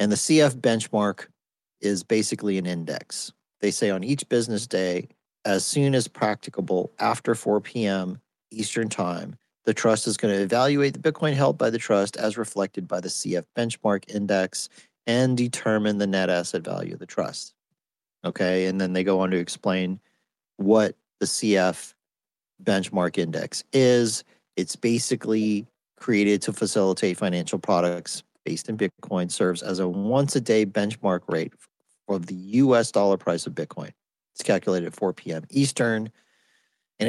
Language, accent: English, American